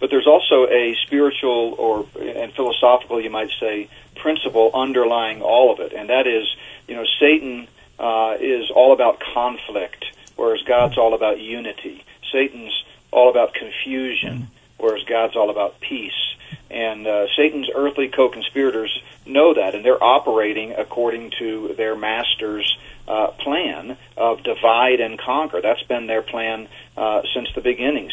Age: 40-59